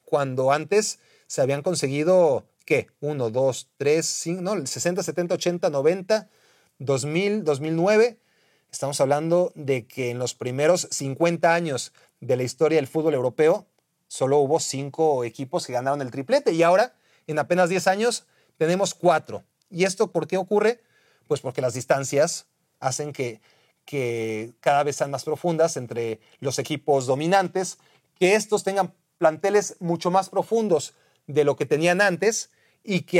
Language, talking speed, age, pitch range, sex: Spanish, 150 wpm, 40-59, 140-185 Hz, male